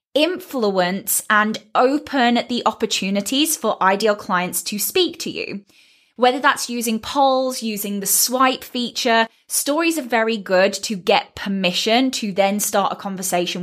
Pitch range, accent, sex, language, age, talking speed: 195-240 Hz, British, female, English, 10-29, 140 wpm